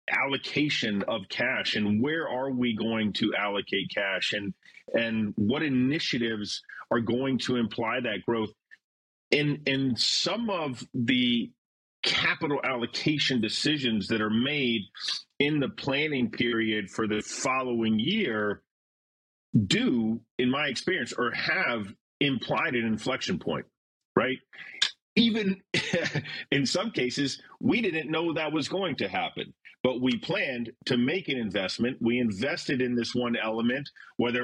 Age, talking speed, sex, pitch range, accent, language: 40-59, 135 wpm, male, 115-150 Hz, American, English